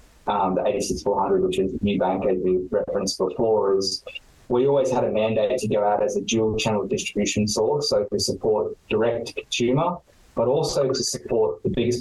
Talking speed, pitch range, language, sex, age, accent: 190 wpm, 105-125 Hz, English, male, 20-39, Australian